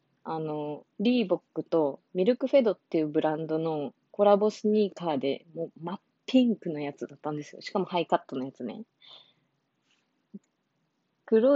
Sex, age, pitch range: female, 20-39, 170-235 Hz